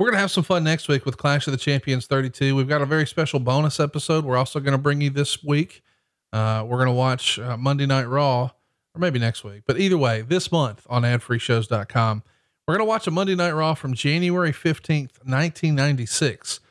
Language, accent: English, American